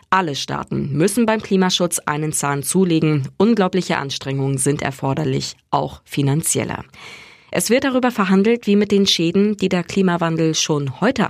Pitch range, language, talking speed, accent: 140-200 Hz, German, 145 wpm, German